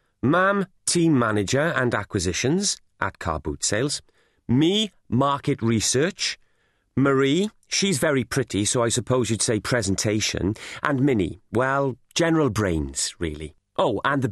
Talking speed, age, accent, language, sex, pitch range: 130 wpm, 30-49, British, English, male, 105-155 Hz